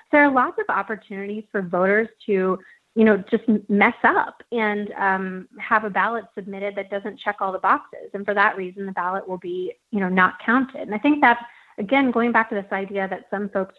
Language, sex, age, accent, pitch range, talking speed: English, female, 30-49, American, 190-220 Hz, 220 wpm